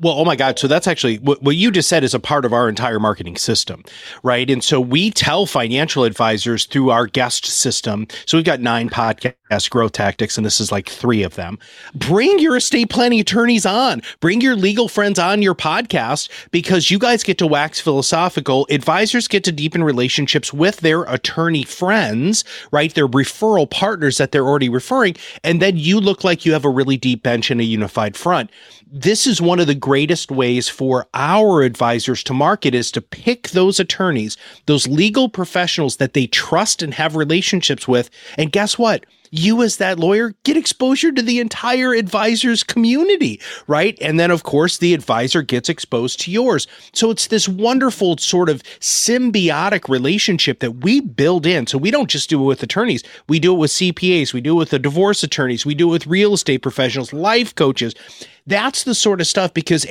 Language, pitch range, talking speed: English, 135-200 Hz, 195 wpm